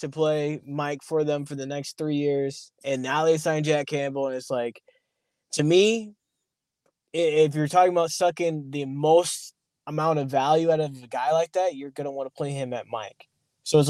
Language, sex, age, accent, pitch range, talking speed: English, male, 20-39, American, 130-160 Hz, 205 wpm